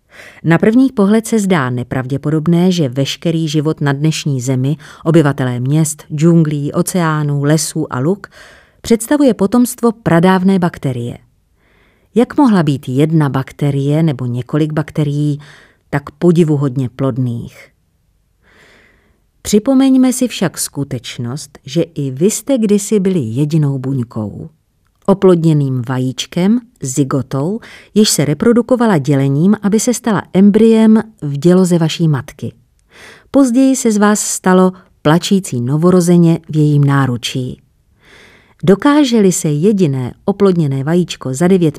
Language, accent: Czech, native